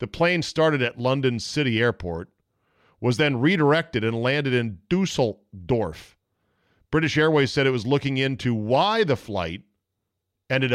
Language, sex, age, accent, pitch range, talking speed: English, male, 40-59, American, 100-140 Hz, 140 wpm